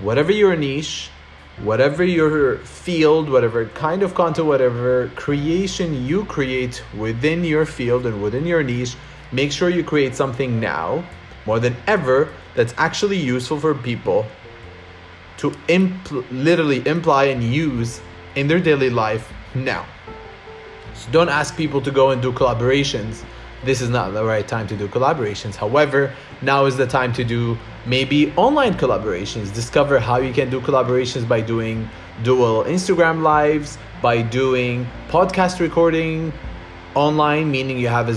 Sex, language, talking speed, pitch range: male, English, 145 wpm, 115-150 Hz